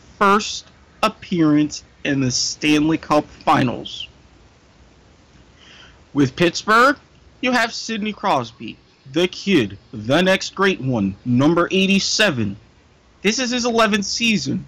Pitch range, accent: 155-230 Hz, American